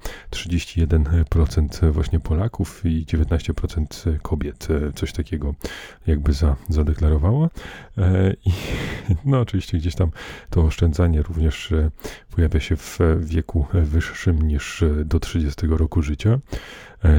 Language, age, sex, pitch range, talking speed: Polish, 30-49, male, 80-90 Hz, 110 wpm